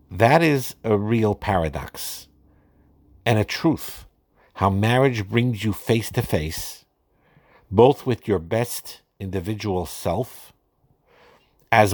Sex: male